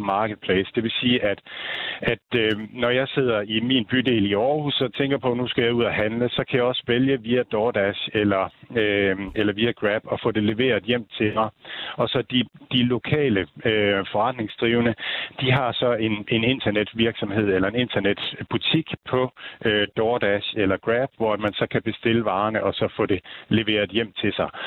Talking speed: 190 wpm